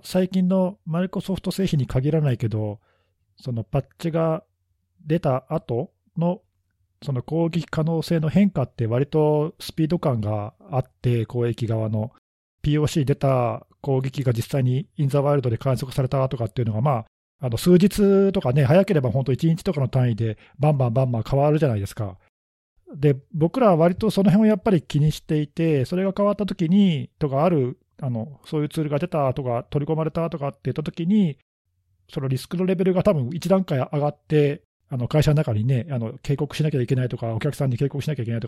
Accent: native